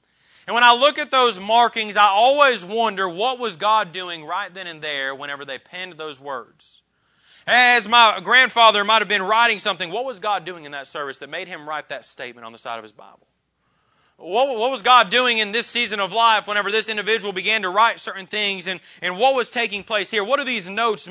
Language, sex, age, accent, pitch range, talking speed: English, male, 30-49, American, 180-230 Hz, 225 wpm